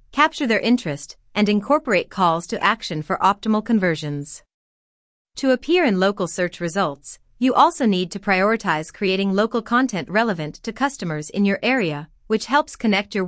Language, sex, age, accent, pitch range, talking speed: English, female, 30-49, American, 170-230 Hz, 160 wpm